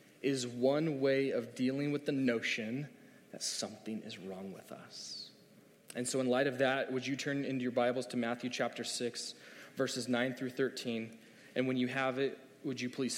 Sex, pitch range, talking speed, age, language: male, 125-145 Hz, 190 wpm, 20-39, English